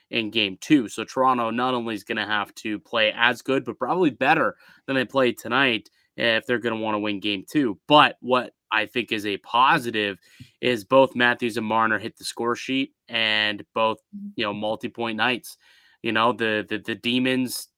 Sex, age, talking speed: male, 20-39, 200 wpm